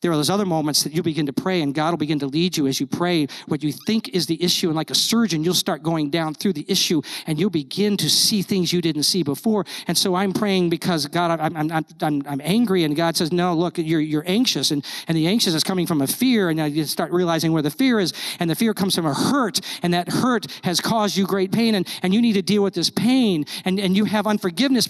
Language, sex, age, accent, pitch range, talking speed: English, male, 50-69, American, 150-195 Hz, 270 wpm